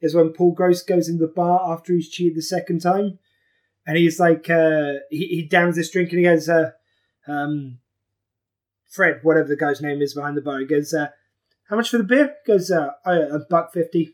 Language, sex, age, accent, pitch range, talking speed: English, male, 20-39, British, 160-260 Hz, 225 wpm